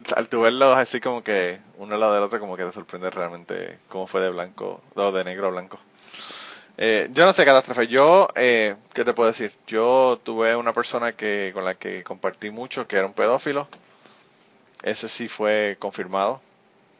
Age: 30-49